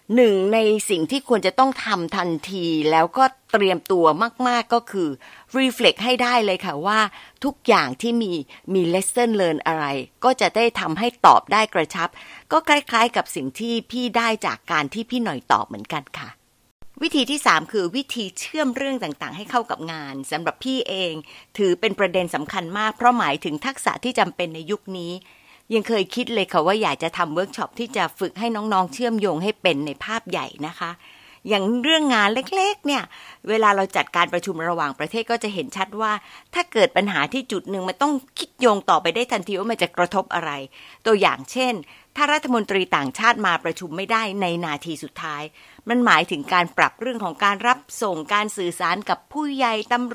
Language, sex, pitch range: Thai, female, 180-245 Hz